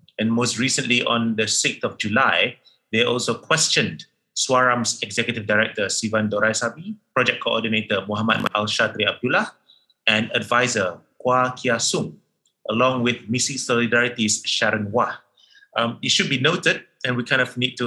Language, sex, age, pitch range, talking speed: English, male, 30-49, 100-120 Hz, 145 wpm